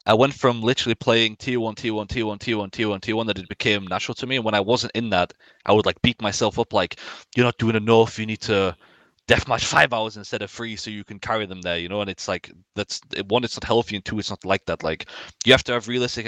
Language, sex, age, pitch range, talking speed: English, male, 20-39, 100-125 Hz, 260 wpm